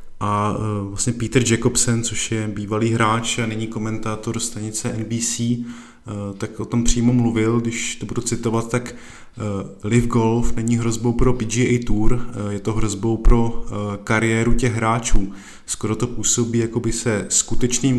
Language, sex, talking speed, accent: Czech, male, 145 wpm, native